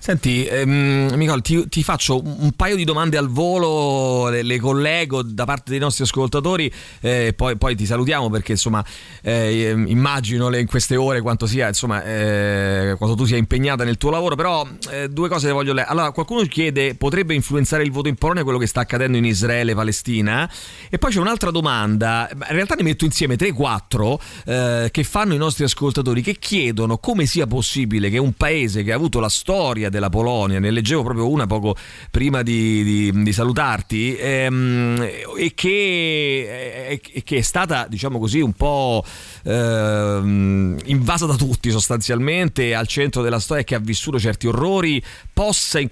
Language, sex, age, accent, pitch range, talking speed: Italian, male, 30-49, native, 115-145 Hz, 175 wpm